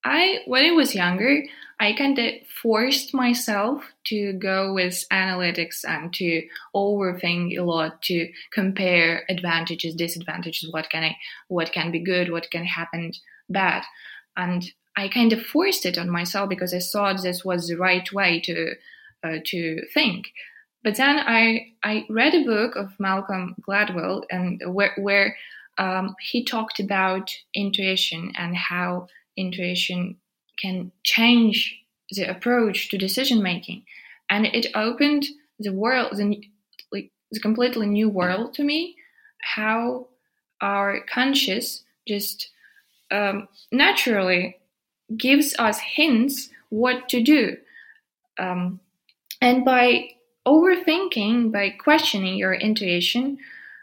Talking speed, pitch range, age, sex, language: 125 wpm, 185-250 Hz, 20-39, female, English